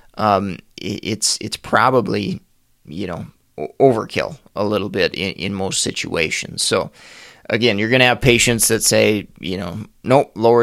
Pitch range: 100-120 Hz